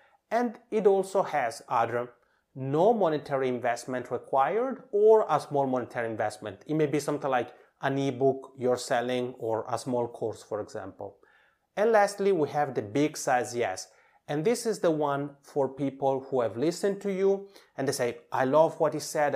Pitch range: 130-185 Hz